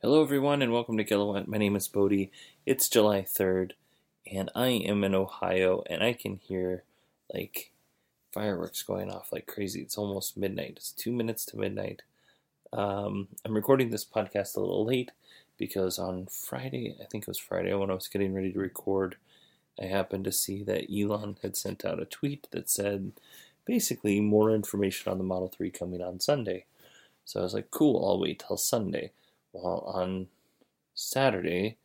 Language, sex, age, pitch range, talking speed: English, male, 20-39, 95-110 Hz, 175 wpm